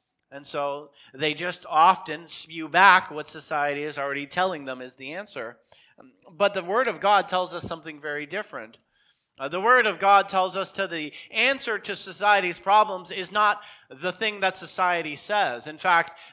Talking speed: 175 wpm